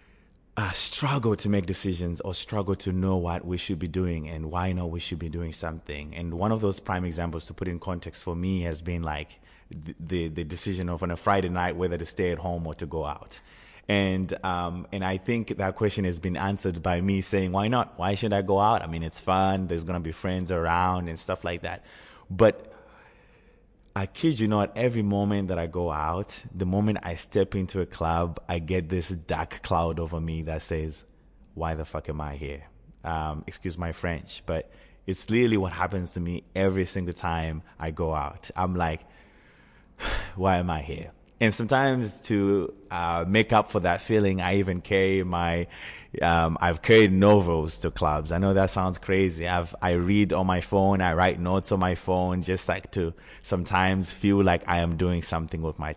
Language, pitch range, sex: English, 85-95 Hz, male